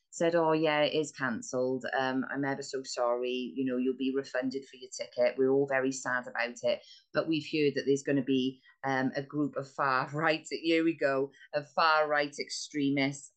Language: English